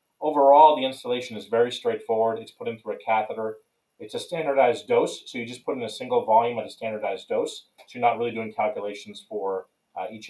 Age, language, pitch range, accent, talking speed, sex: 40-59, English, 105-125 Hz, American, 215 wpm, male